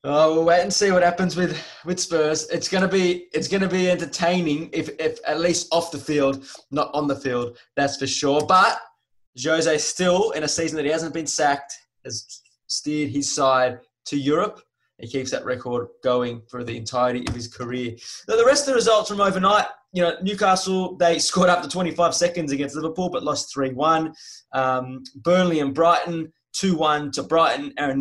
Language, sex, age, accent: English, male, 20-39, Australian